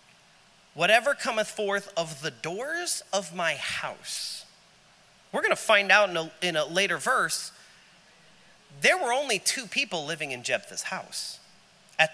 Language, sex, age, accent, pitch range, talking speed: English, male, 30-49, American, 160-250 Hz, 145 wpm